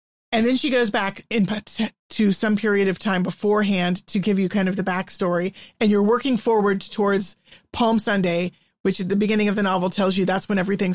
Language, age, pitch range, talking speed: English, 40-59, 190-215 Hz, 210 wpm